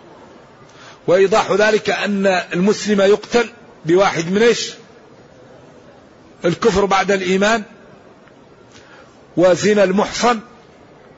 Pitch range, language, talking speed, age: 175-205 Hz, Arabic, 65 wpm, 50-69